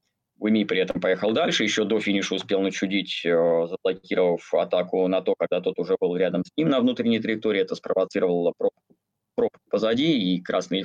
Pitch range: 100-145 Hz